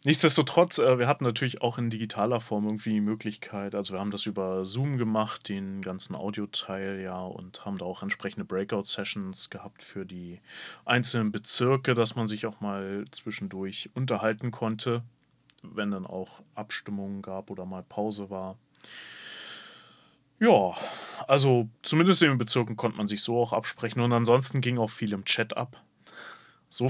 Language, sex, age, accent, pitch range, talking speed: German, male, 30-49, German, 105-125 Hz, 160 wpm